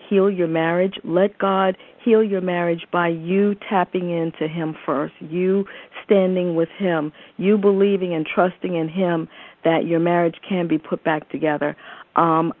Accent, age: American, 50-69